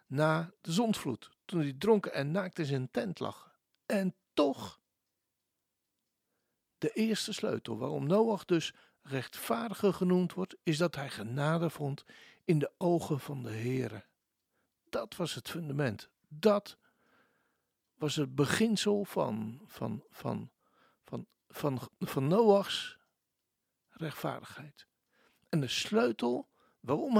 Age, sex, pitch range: 60-79, male, 145-200 Hz